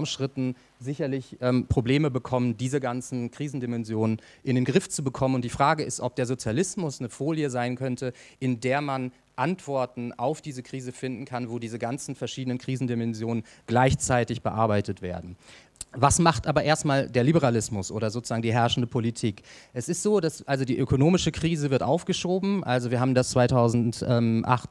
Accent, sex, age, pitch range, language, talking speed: German, male, 30-49, 115-135 Hz, German, 160 wpm